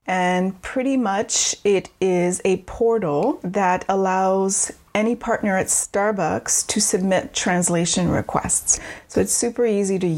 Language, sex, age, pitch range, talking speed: English, female, 30-49, 185-230 Hz, 130 wpm